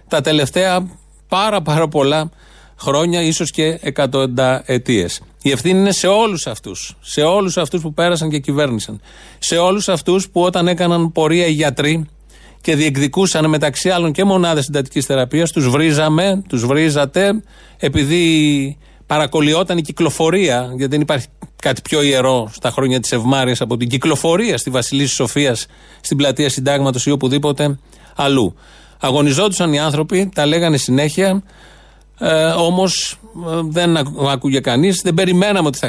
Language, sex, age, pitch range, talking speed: Greek, male, 30-49, 130-170 Hz, 140 wpm